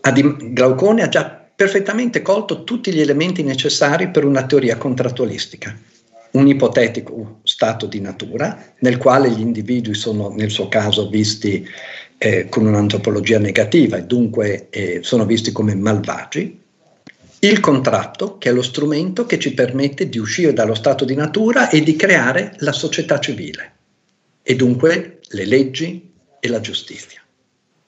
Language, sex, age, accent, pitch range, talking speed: Italian, male, 50-69, native, 110-150 Hz, 140 wpm